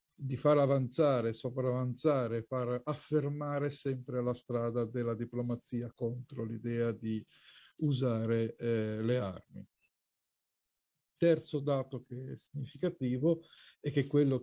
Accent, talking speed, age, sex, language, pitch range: native, 110 wpm, 50-69, male, Italian, 120-140 Hz